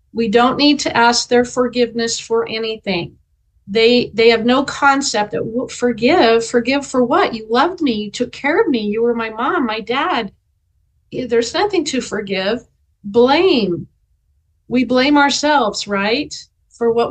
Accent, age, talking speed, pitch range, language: American, 40-59, 155 wpm, 220-275 Hz, English